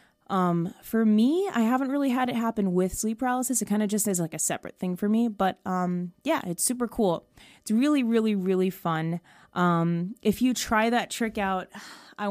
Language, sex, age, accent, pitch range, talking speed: English, female, 20-39, American, 180-230 Hz, 205 wpm